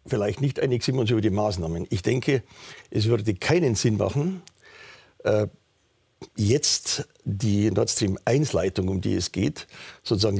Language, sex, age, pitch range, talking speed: German, male, 60-79, 105-135 Hz, 150 wpm